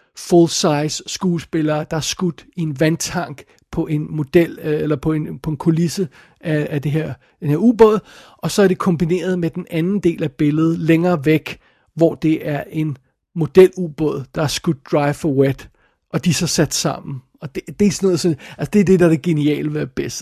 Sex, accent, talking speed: male, native, 210 wpm